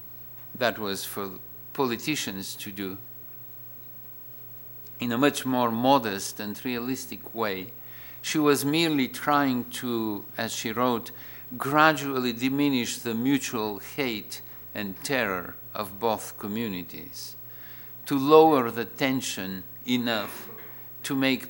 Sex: male